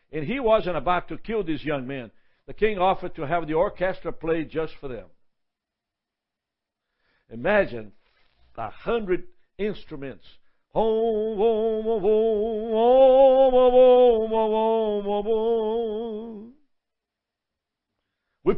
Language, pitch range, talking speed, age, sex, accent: English, 155-225 Hz, 80 wpm, 60-79, male, American